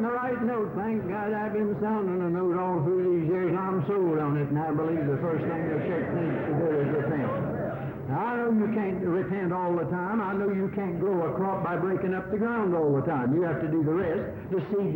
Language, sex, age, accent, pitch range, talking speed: English, male, 60-79, American, 160-195 Hz, 255 wpm